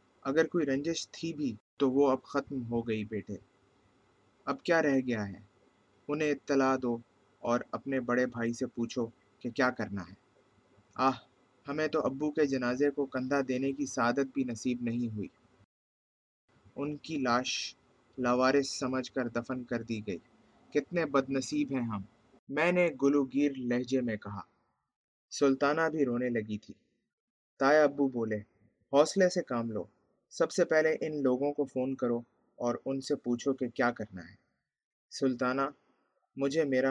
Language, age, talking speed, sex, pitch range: Urdu, 30-49, 160 wpm, male, 115-140 Hz